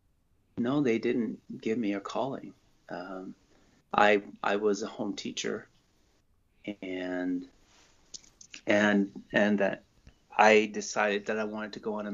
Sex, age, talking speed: male, 30-49, 135 wpm